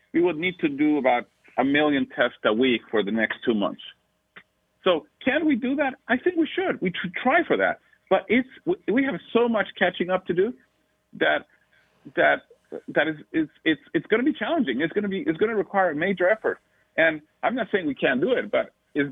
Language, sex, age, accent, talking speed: English, male, 50-69, American, 225 wpm